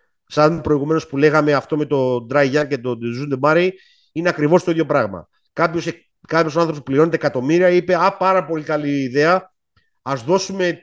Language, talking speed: Greek, 170 wpm